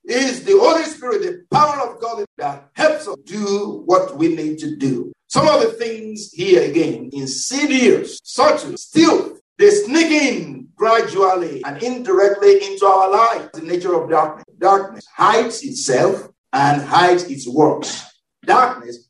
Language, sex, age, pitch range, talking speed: English, male, 50-69, 150-250 Hz, 150 wpm